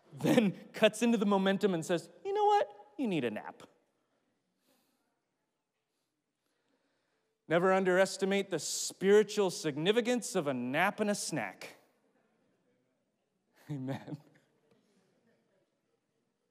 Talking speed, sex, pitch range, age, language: 95 wpm, male, 135-180 Hz, 30-49, English